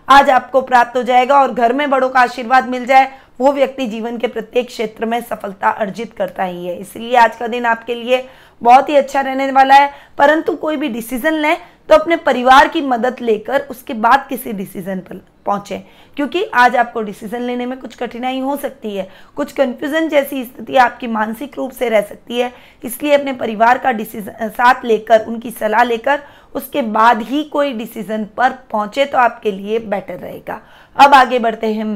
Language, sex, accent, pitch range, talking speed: Hindi, female, native, 230-275 Hz, 155 wpm